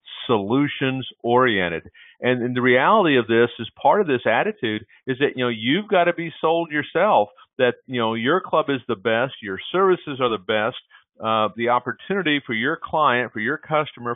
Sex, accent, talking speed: male, American, 190 wpm